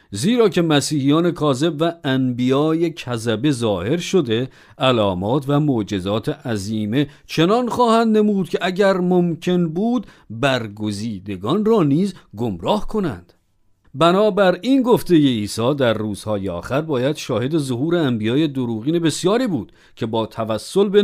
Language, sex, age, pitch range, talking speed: Persian, male, 50-69, 105-165 Hz, 125 wpm